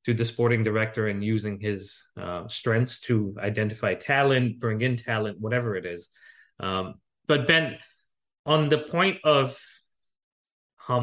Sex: male